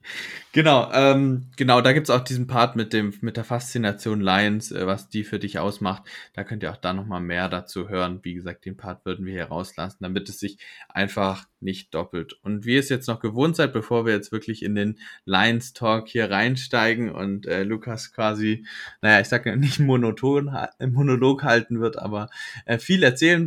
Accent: German